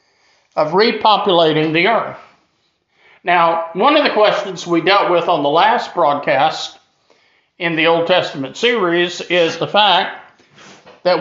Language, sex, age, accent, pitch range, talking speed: English, male, 50-69, American, 150-185 Hz, 135 wpm